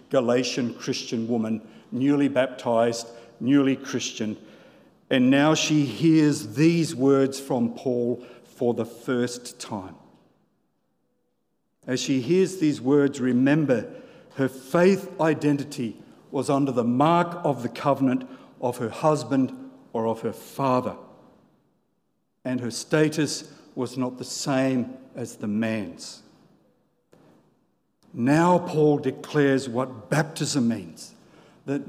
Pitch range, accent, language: 130-185 Hz, Australian, English